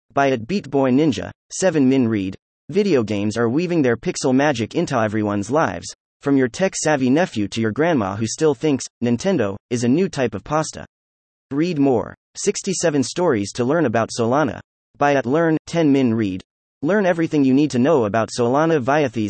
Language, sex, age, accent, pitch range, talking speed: English, male, 30-49, American, 110-155 Hz, 175 wpm